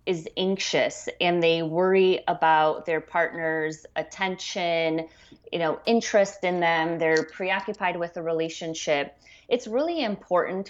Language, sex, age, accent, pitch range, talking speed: English, female, 30-49, American, 160-190 Hz, 125 wpm